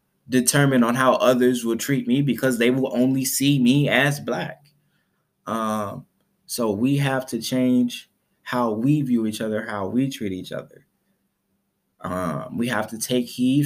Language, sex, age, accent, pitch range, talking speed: English, male, 20-39, American, 110-130 Hz, 165 wpm